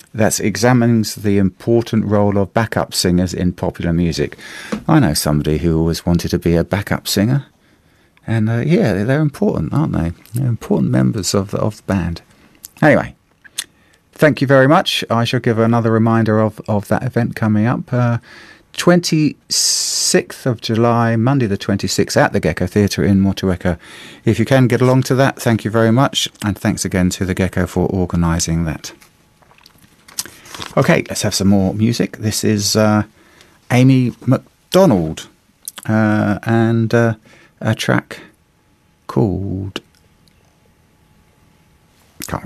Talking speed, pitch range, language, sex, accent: 145 wpm, 90-120 Hz, English, male, British